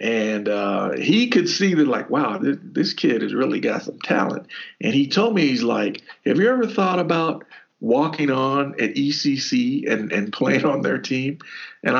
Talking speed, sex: 190 wpm, male